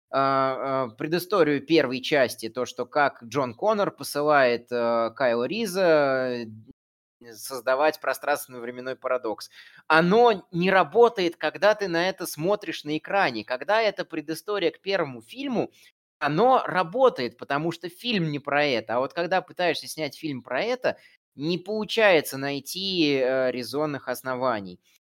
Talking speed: 125 wpm